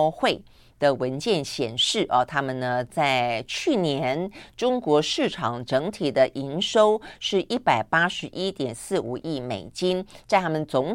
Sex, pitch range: female, 130-170 Hz